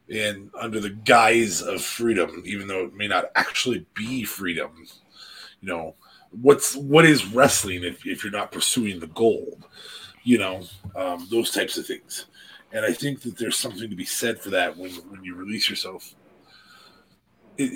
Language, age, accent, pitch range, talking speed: English, 30-49, American, 95-140 Hz, 170 wpm